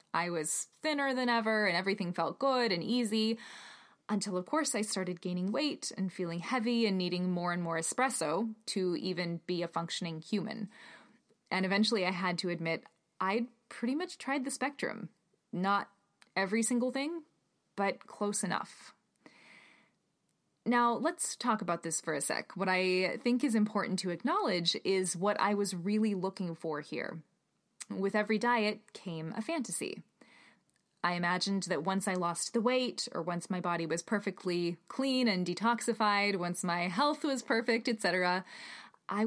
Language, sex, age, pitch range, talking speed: English, female, 20-39, 180-235 Hz, 160 wpm